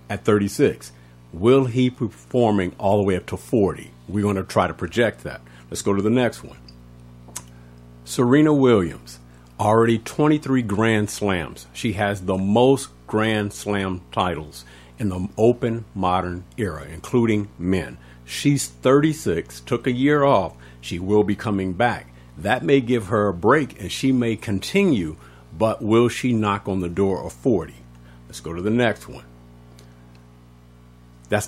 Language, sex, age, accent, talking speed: English, male, 50-69, American, 155 wpm